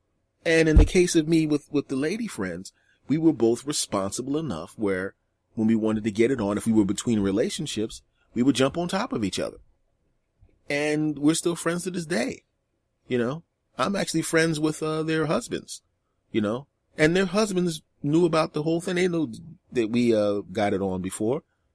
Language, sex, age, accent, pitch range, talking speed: English, male, 30-49, American, 95-140 Hz, 200 wpm